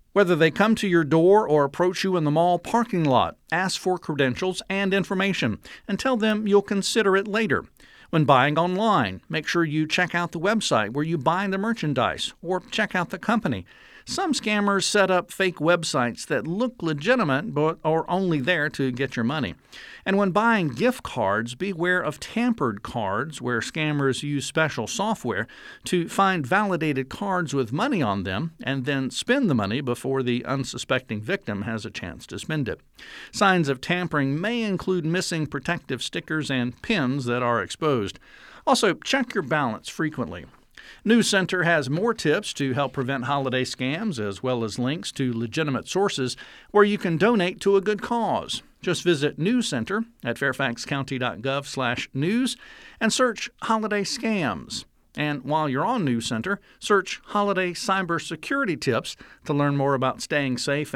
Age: 50-69